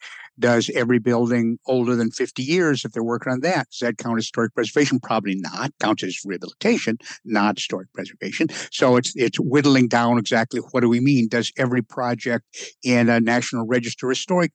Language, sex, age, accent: English, male, 60-79, American